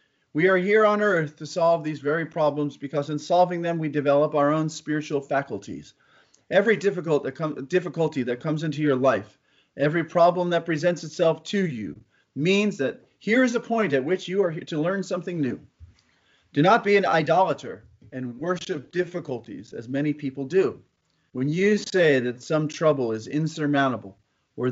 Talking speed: 170 wpm